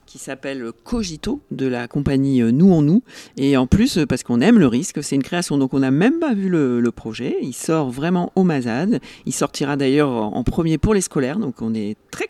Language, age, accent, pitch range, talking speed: French, 40-59, French, 125-170 Hz, 225 wpm